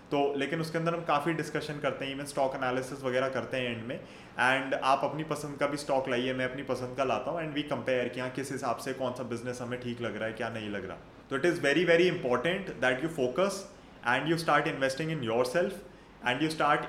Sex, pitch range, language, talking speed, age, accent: male, 130-155 Hz, Hindi, 245 wpm, 20-39, native